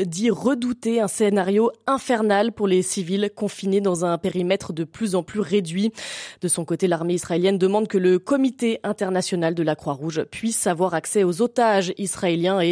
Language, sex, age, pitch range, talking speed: French, female, 20-39, 185-245 Hz, 175 wpm